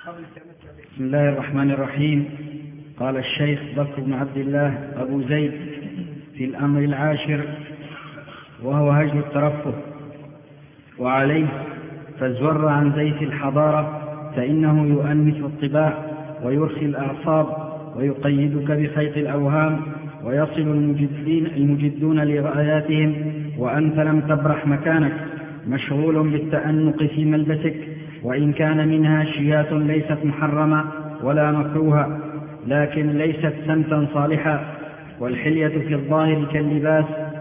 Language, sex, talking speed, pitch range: Arabic, male, 95 wpm, 145-155 Hz